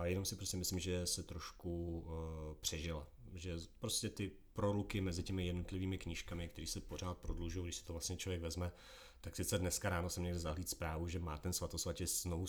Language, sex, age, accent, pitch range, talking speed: Czech, male, 30-49, native, 85-90 Hz, 190 wpm